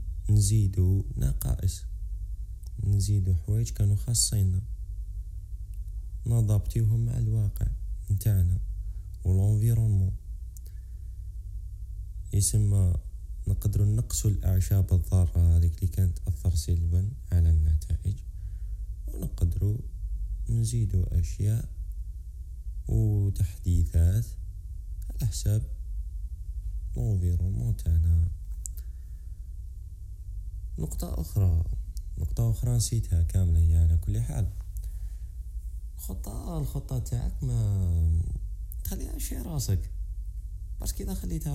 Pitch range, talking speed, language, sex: 80-100 Hz, 75 wpm, Arabic, male